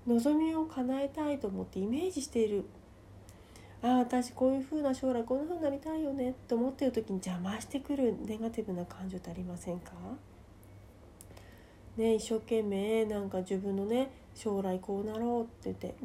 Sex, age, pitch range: female, 40-59, 190-270 Hz